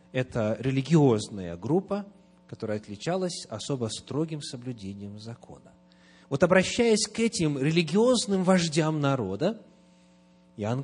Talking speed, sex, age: 95 wpm, male, 30-49